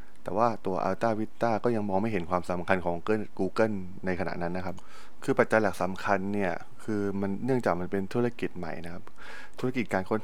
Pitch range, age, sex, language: 90-115 Hz, 20-39, male, Thai